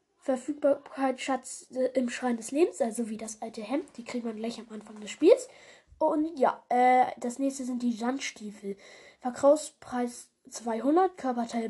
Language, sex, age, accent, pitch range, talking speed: German, female, 10-29, German, 245-290 Hz, 155 wpm